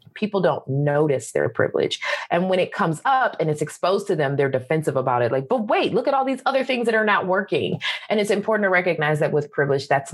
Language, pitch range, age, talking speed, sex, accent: English, 135-195 Hz, 20-39, 245 wpm, female, American